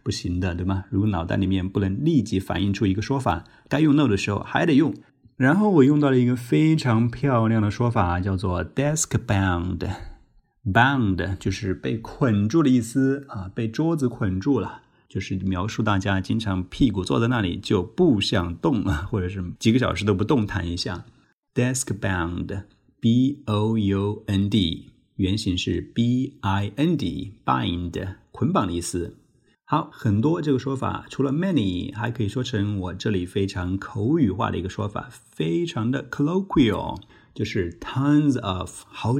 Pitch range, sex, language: 95-125 Hz, male, Chinese